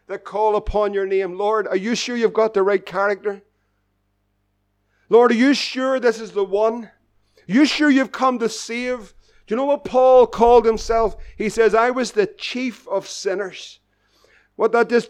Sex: male